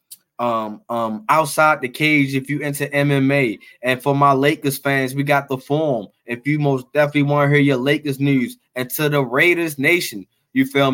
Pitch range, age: 135-150 Hz, 20-39